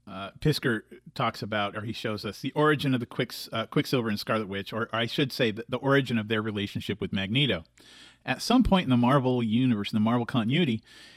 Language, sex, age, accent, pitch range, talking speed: English, male, 40-59, American, 110-145 Hz, 215 wpm